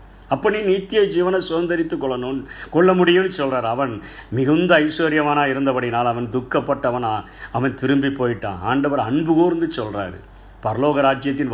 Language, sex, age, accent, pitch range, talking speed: Tamil, male, 50-69, native, 125-155 Hz, 120 wpm